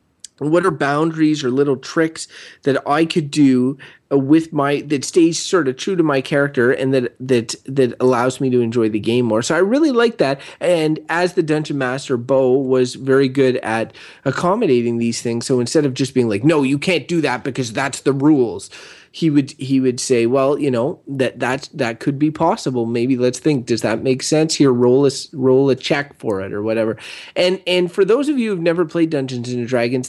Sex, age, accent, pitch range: male, 30-49, American, 130-165 Hz